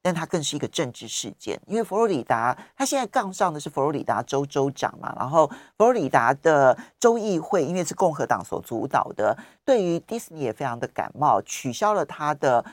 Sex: male